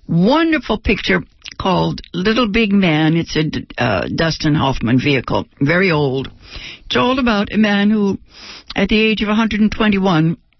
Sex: female